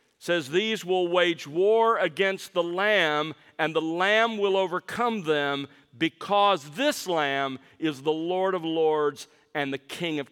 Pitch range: 145-190 Hz